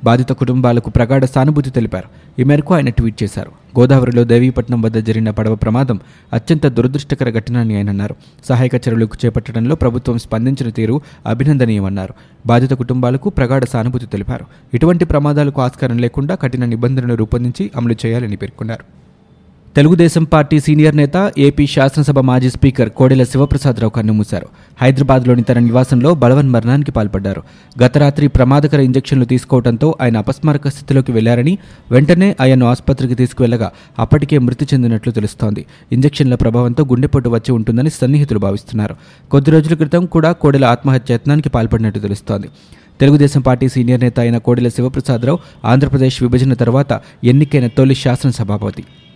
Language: Telugu